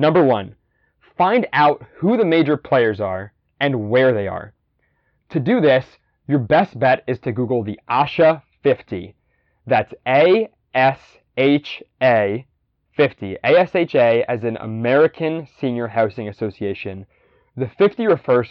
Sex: male